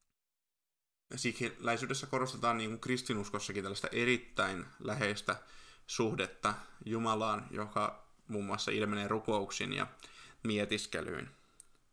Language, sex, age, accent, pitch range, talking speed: Finnish, male, 20-39, native, 105-125 Hz, 80 wpm